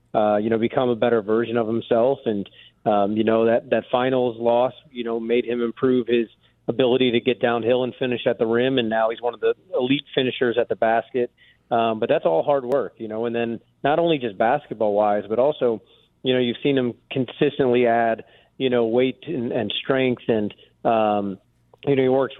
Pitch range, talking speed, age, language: 110-125 Hz, 210 wpm, 30-49, English